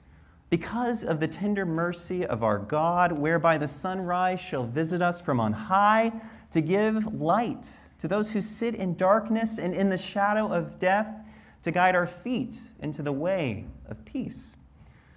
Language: English